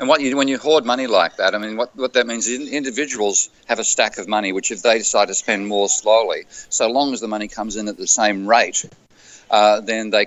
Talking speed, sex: 265 wpm, male